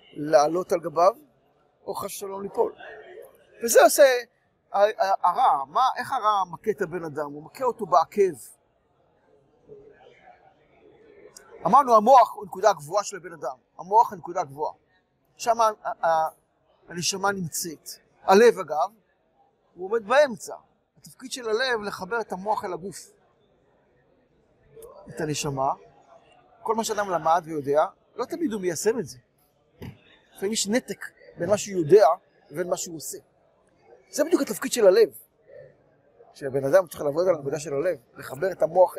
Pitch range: 175-285 Hz